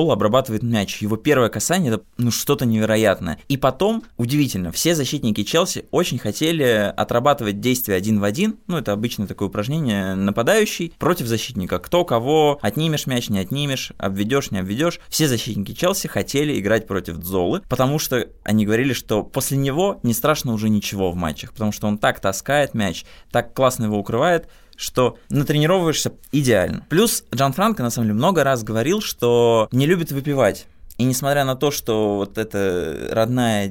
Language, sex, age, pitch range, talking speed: Russian, male, 20-39, 105-145 Hz, 165 wpm